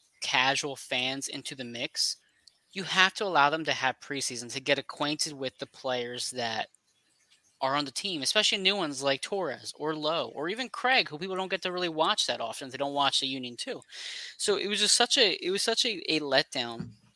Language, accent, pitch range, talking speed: English, American, 130-175 Hz, 215 wpm